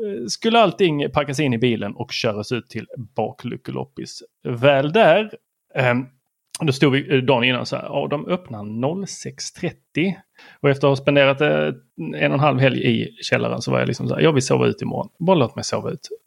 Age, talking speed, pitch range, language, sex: 30-49, 190 wpm, 120-160 Hz, Swedish, male